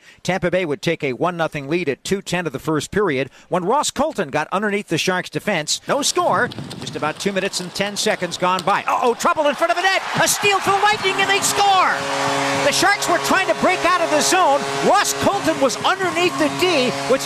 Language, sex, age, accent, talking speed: English, male, 50-69, American, 225 wpm